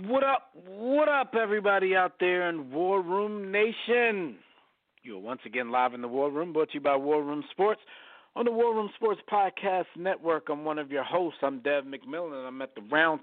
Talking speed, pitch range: 210 wpm, 135-185 Hz